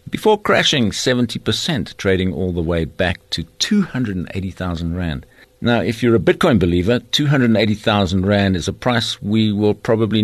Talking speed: 145 wpm